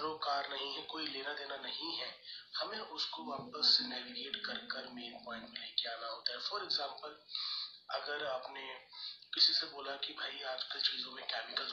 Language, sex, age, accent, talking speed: Hindi, male, 30-49, native, 140 wpm